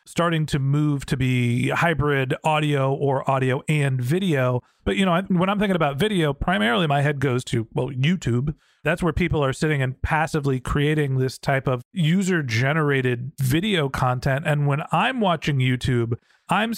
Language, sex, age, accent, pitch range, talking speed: English, male, 40-59, American, 140-175 Hz, 165 wpm